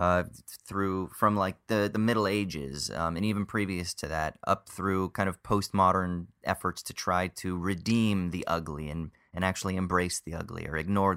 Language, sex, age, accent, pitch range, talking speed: English, male, 30-49, American, 90-110 Hz, 190 wpm